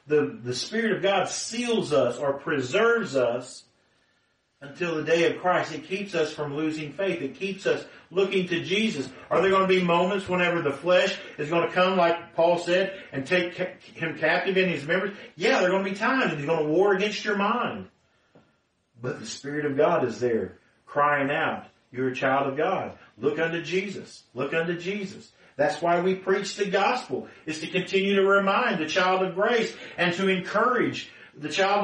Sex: male